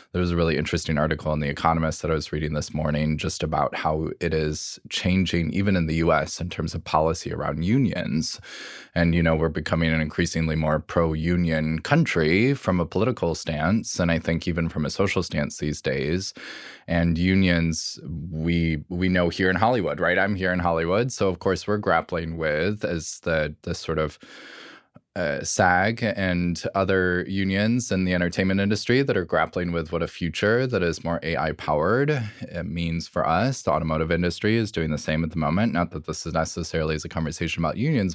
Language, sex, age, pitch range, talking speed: English, male, 20-39, 80-95 Hz, 190 wpm